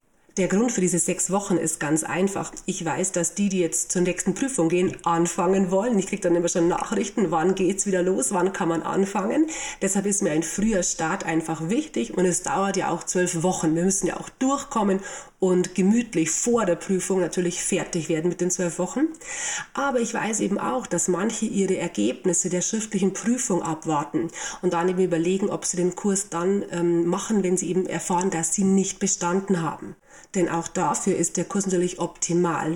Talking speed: 200 wpm